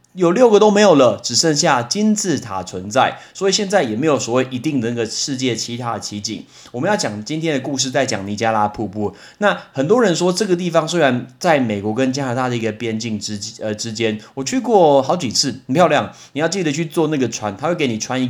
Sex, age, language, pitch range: male, 30-49, Chinese, 115-155 Hz